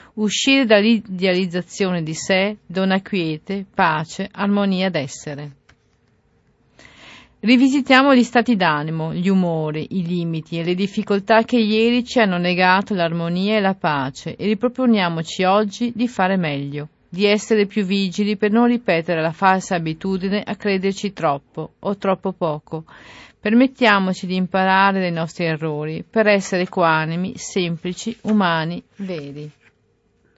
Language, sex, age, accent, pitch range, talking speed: Italian, female, 40-59, native, 170-215 Hz, 125 wpm